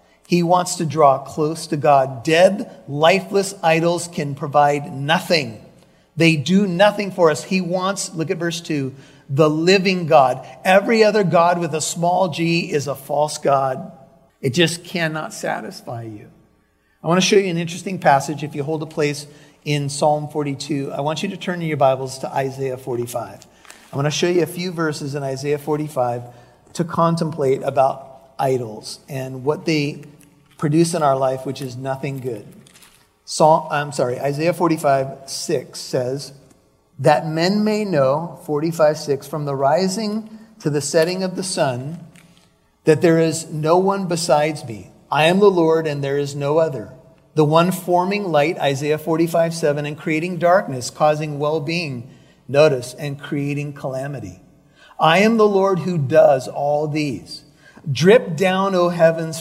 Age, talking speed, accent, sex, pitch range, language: 50-69, 165 wpm, American, male, 140-170 Hz, English